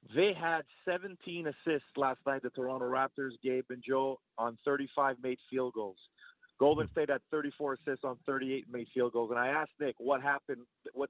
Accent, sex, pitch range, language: American, male, 130-155 Hz, English